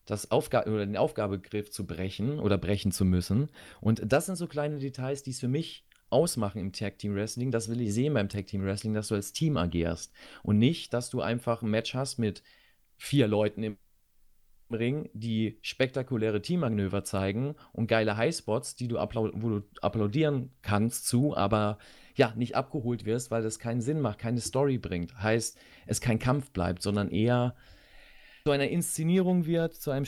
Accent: German